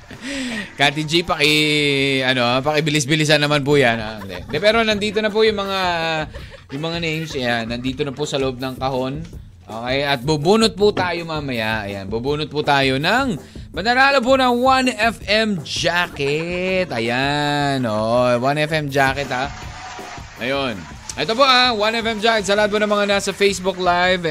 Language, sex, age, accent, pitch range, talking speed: Filipino, male, 20-39, native, 125-175 Hz, 150 wpm